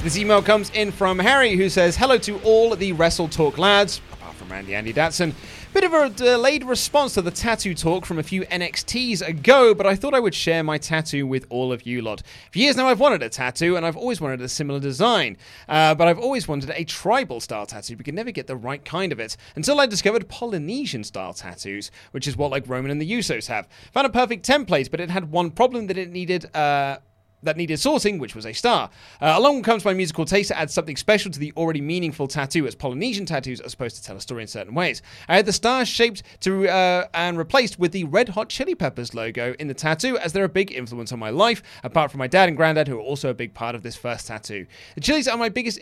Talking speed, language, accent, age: 245 wpm, English, British, 30-49